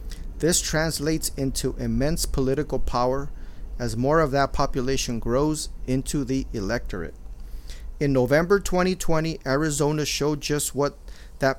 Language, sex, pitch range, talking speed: English, male, 120-155 Hz, 120 wpm